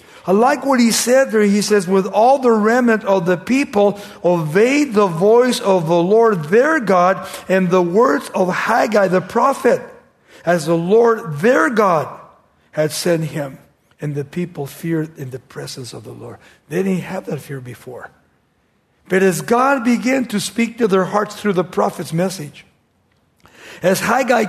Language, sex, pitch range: English, male, 160-220 Hz